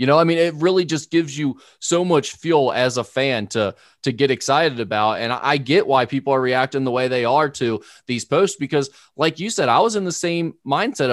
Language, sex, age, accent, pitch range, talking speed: English, male, 20-39, American, 125-160 Hz, 235 wpm